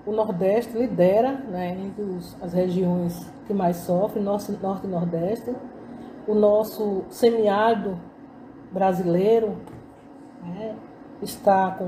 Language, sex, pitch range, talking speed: Portuguese, female, 195-260 Hz, 105 wpm